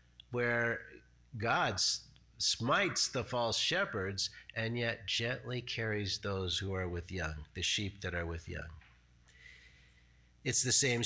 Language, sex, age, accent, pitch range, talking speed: English, male, 50-69, American, 95-130 Hz, 130 wpm